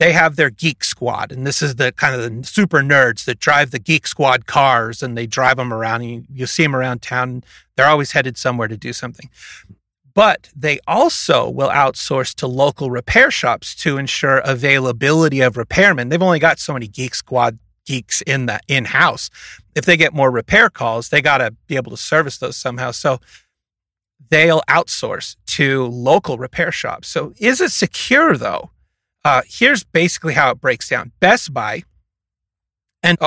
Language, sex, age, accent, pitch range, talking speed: English, male, 30-49, American, 125-160 Hz, 185 wpm